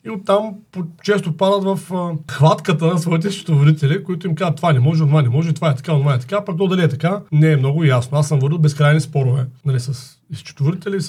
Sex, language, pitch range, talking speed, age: male, Bulgarian, 140-175 Hz, 225 wpm, 40-59